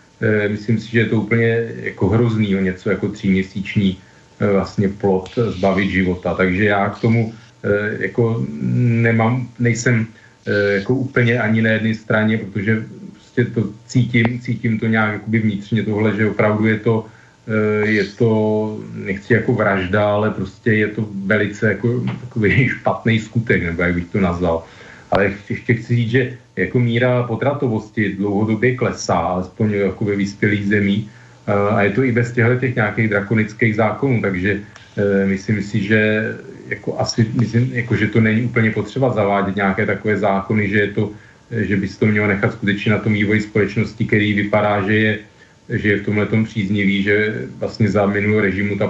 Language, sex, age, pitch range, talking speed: Slovak, male, 40-59, 100-115 Hz, 160 wpm